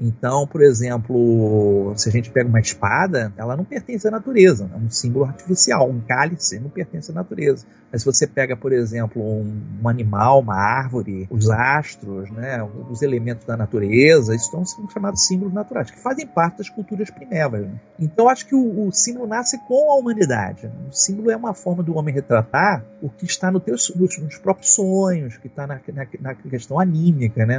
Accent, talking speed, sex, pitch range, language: Brazilian, 200 wpm, male, 120-175 Hz, Portuguese